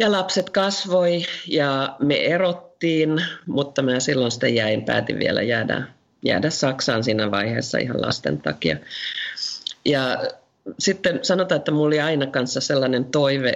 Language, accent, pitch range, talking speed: Finnish, native, 125-160 Hz, 135 wpm